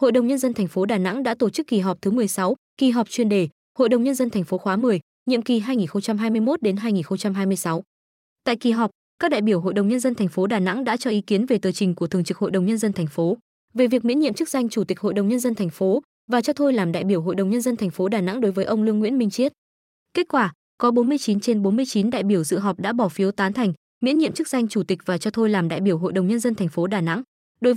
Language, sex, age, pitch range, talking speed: Vietnamese, female, 20-39, 195-250 Hz, 285 wpm